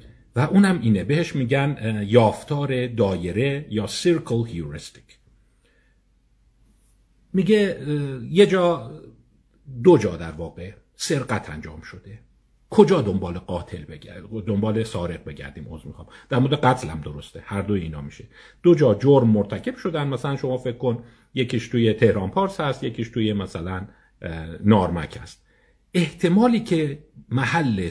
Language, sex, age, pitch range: Persian, male, 50-69, 100-150 Hz